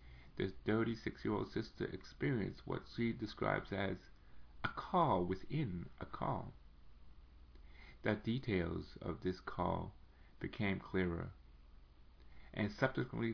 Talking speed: 105 wpm